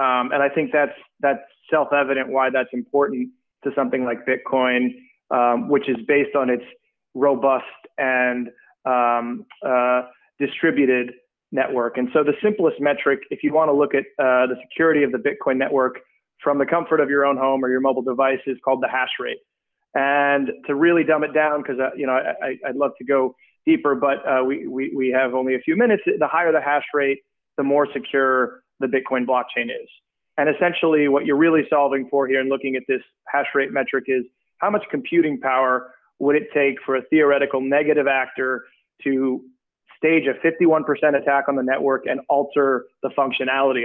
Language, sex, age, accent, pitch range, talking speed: English, male, 30-49, American, 130-145 Hz, 190 wpm